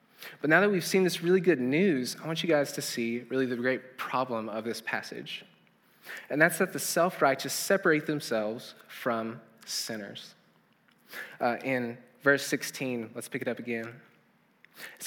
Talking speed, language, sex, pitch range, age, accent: 165 wpm, English, male, 120-160 Hz, 20-39, American